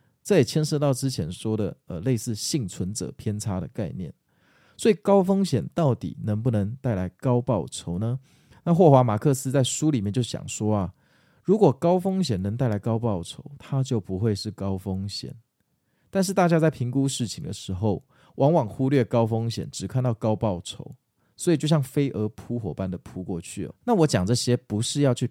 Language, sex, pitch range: Chinese, male, 100-135 Hz